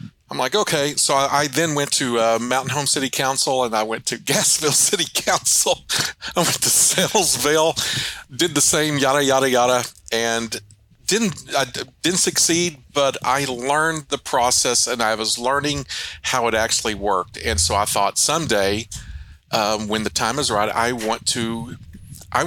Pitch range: 110-140 Hz